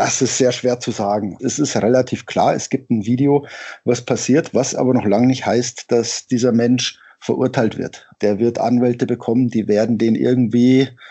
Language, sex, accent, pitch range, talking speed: German, male, German, 130-170 Hz, 190 wpm